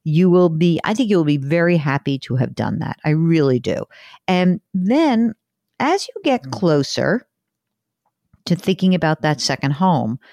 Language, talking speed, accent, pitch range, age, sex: English, 170 wpm, American, 130-180 Hz, 50-69, female